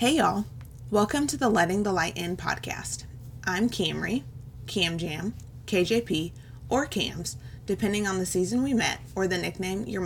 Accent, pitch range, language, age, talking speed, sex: American, 130-190 Hz, English, 20-39, 160 wpm, female